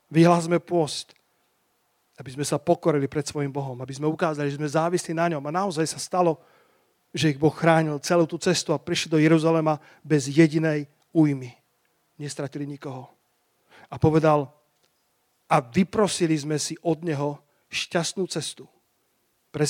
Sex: male